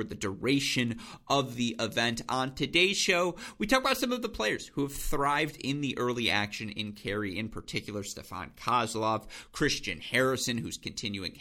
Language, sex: English, male